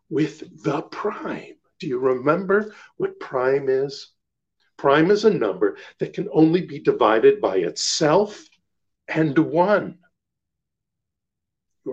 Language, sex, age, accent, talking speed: English, male, 50-69, American, 115 wpm